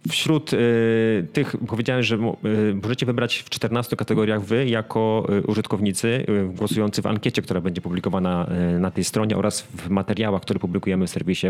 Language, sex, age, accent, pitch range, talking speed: Polish, male, 30-49, native, 100-120 Hz, 145 wpm